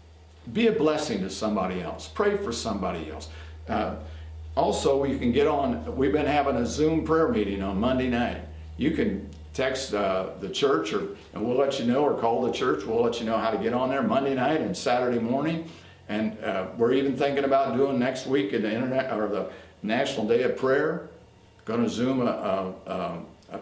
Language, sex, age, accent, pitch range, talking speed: English, male, 50-69, American, 80-135 Hz, 200 wpm